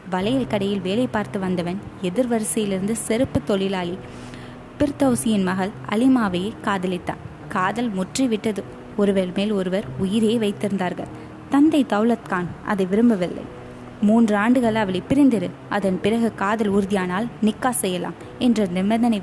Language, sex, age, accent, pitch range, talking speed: Tamil, female, 20-39, native, 190-230 Hz, 110 wpm